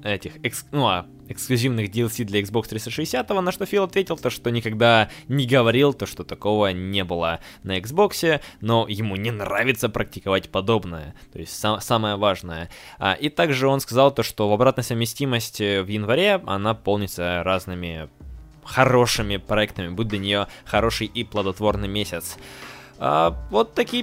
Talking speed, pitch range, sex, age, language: 155 wpm, 100-135 Hz, male, 20-39, Russian